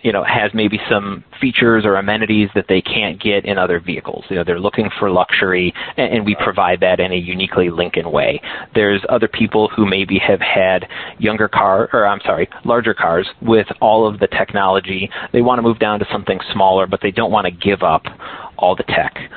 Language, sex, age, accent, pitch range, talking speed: English, male, 30-49, American, 95-115 Hz, 210 wpm